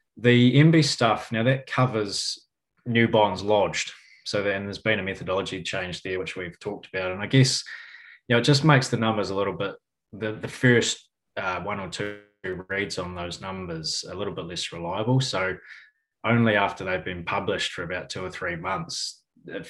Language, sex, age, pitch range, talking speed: English, male, 20-39, 95-120 Hz, 190 wpm